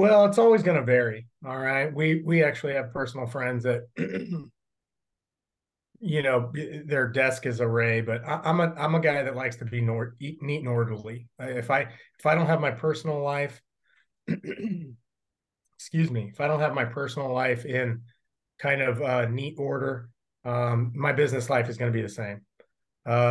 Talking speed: 180 wpm